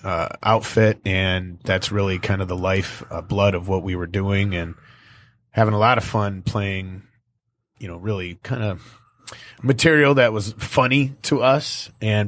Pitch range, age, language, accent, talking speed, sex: 95-120 Hz, 30-49, English, American, 170 wpm, male